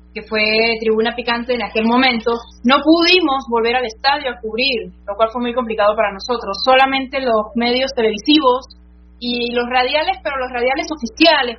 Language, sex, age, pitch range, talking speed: Spanish, female, 20-39, 225-265 Hz, 165 wpm